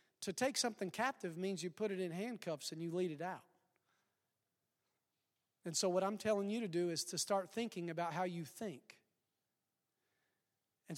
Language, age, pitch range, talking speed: English, 40-59, 165-210 Hz, 175 wpm